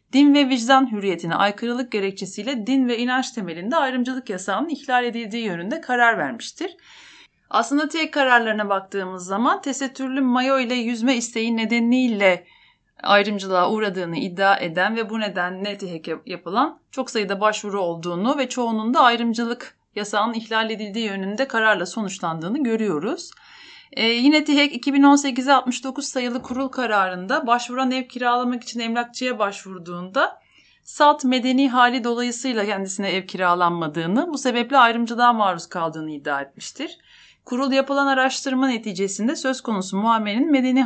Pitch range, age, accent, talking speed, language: 195-260 Hz, 30-49, native, 130 wpm, Turkish